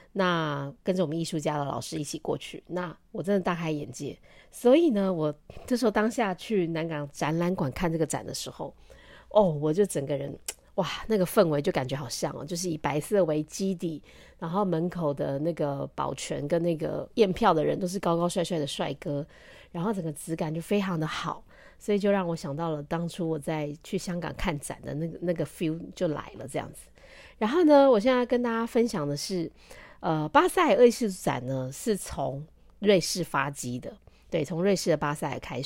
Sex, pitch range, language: female, 145-195 Hz, Chinese